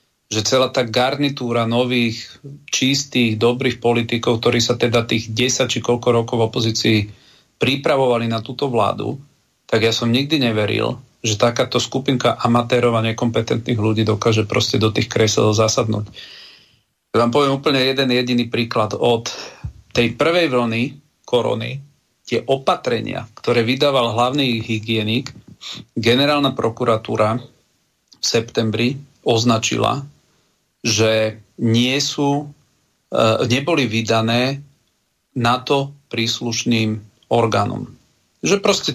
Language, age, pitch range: Slovak, 40-59, 115-135 Hz